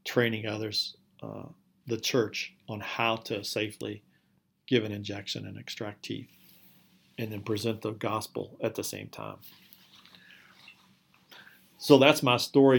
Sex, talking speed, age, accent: male, 130 wpm, 40-59, American